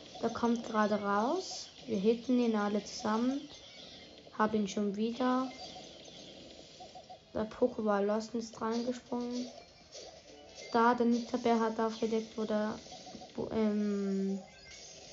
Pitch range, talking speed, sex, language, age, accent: 220-250 Hz, 115 wpm, female, German, 20-39, German